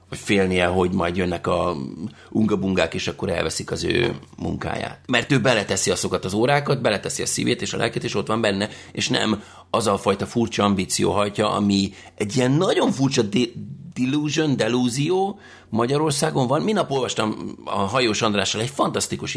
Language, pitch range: English, 95-130 Hz